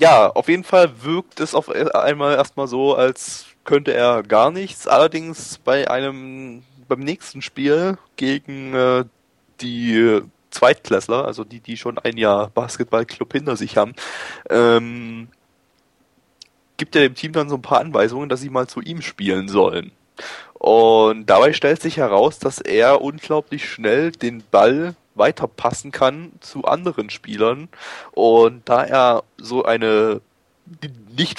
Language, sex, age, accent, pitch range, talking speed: German, male, 20-39, German, 115-145 Hz, 140 wpm